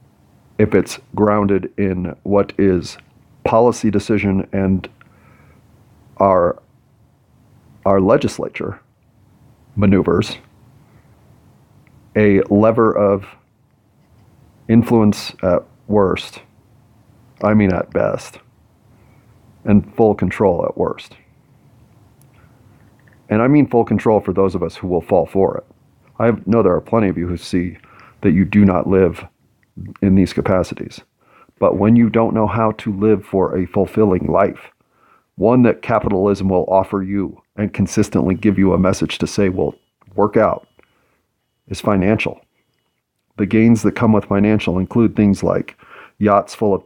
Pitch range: 95-110 Hz